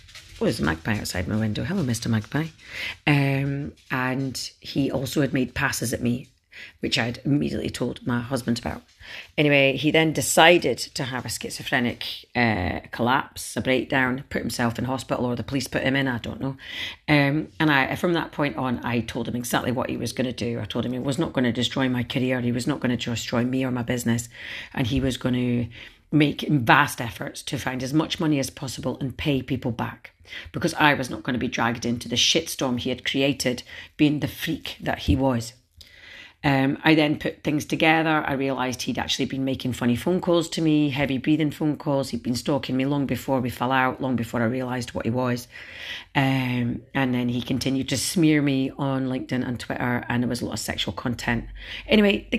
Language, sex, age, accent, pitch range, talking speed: English, female, 40-59, British, 120-140 Hz, 215 wpm